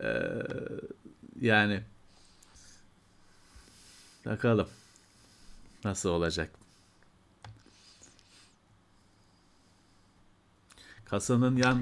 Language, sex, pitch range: Turkish, male, 100-170 Hz